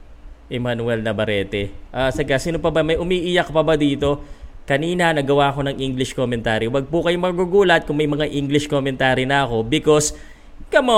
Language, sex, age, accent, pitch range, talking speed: Filipino, male, 20-39, native, 110-170 Hz, 170 wpm